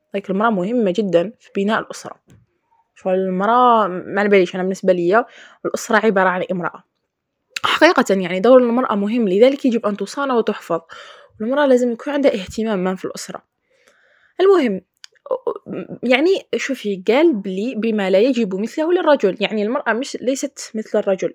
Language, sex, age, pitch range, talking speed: Arabic, female, 20-39, 195-275 Hz, 150 wpm